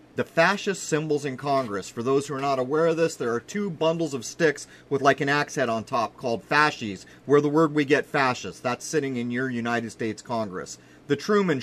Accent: American